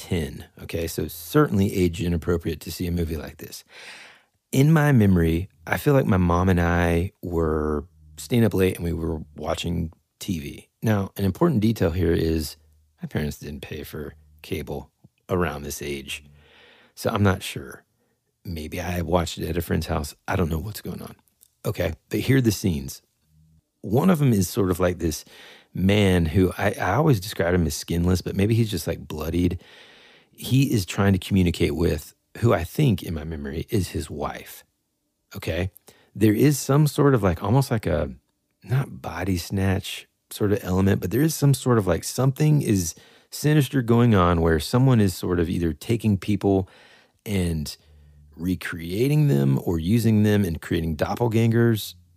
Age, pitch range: 30-49, 80-105 Hz